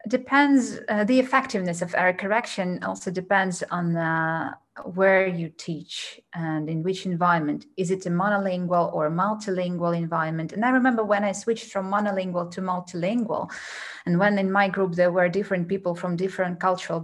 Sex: female